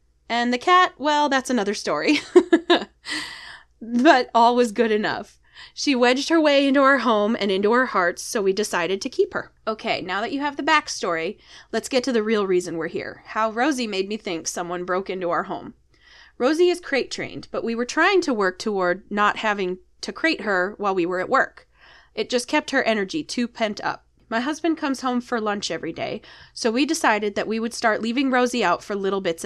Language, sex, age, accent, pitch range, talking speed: English, female, 20-39, American, 200-280 Hz, 210 wpm